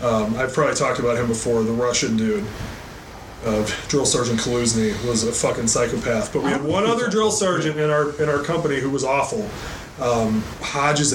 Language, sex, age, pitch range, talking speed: English, male, 30-49, 120-150 Hz, 190 wpm